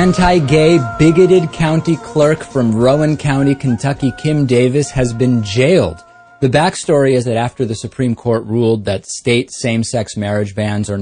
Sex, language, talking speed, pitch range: male, English, 165 wpm, 115-155 Hz